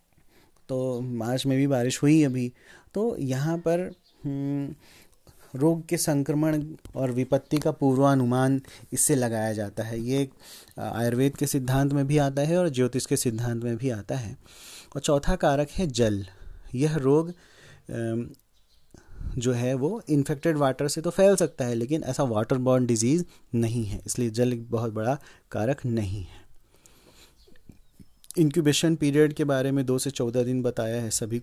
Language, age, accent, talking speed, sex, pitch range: Hindi, 30-49, native, 150 wpm, male, 120-150 Hz